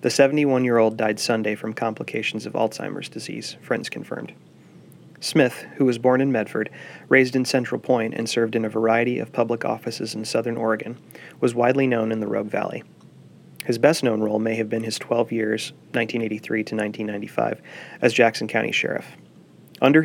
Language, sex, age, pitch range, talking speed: English, male, 30-49, 110-125 Hz, 170 wpm